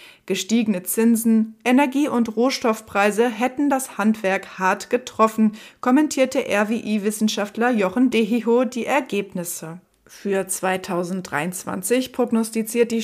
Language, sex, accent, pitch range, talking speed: German, female, German, 185-245 Hz, 90 wpm